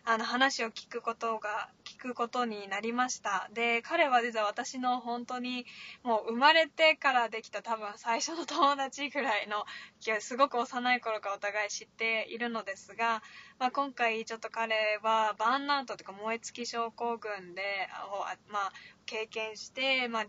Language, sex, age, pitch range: Japanese, female, 20-39, 210-270 Hz